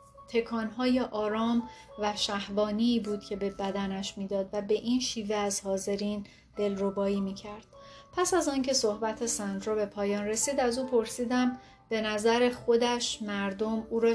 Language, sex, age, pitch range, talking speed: Persian, female, 30-49, 200-235 Hz, 150 wpm